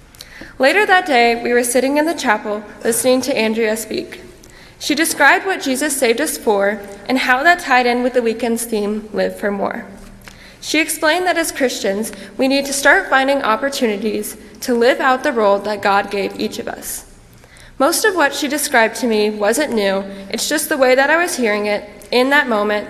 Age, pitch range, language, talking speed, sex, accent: 20-39, 210-275 Hz, English, 195 wpm, female, American